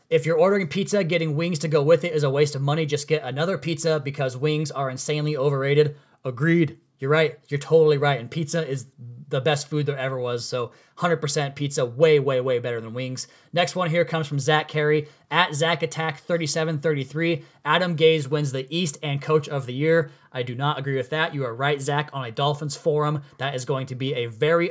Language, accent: English, American